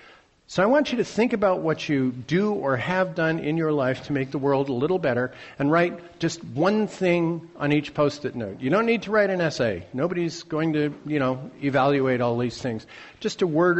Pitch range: 135-165 Hz